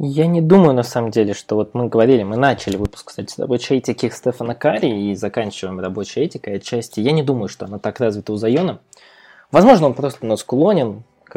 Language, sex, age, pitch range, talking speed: Russian, male, 20-39, 105-140 Hz, 200 wpm